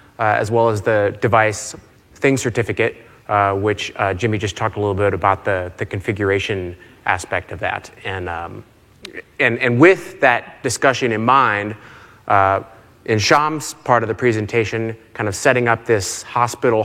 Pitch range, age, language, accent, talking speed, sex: 110-125 Hz, 30-49, English, American, 165 wpm, male